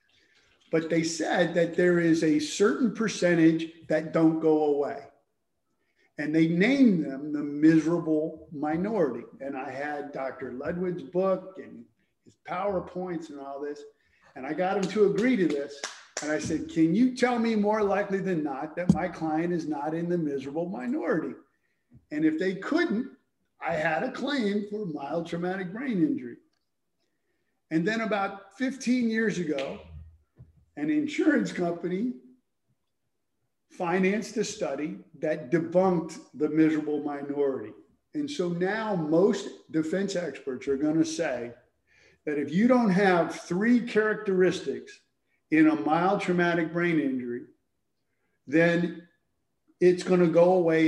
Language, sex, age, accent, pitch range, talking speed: English, male, 50-69, American, 155-200 Hz, 140 wpm